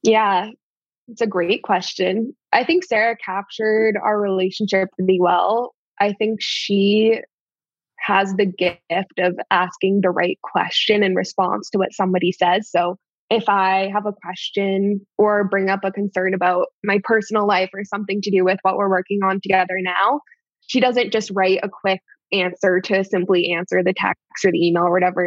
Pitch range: 185-215 Hz